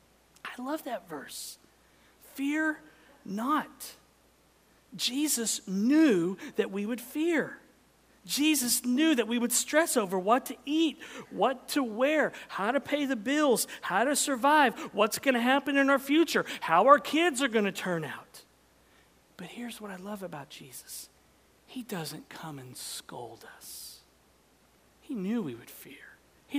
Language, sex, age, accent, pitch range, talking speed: English, male, 50-69, American, 180-275 Hz, 150 wpm